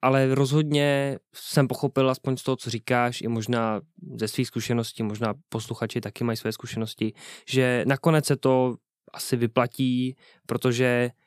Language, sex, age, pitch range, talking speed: Czech, male, 20-39, 115-140 Hz, 145 wpm